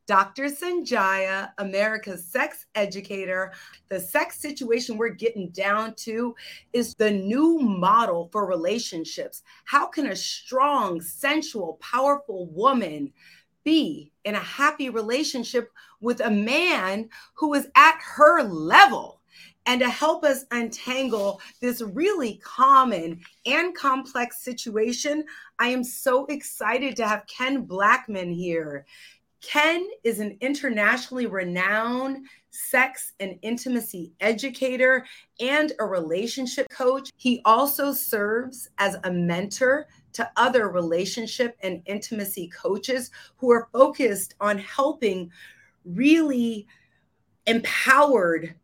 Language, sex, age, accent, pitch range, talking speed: English, female, 30-49, American, 195-265 Hz, 110 wpm